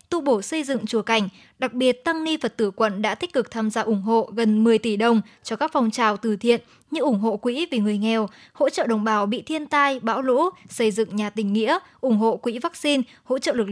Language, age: Vietnamese, 10-29